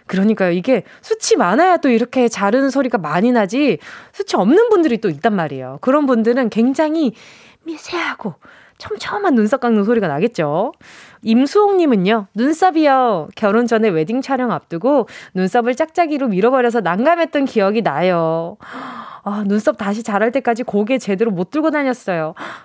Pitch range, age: 220-325 Hz, 20-39